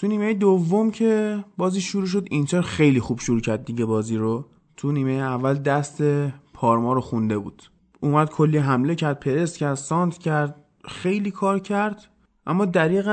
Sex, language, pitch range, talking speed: male, Persian, 125-155 Hz, 165 wpm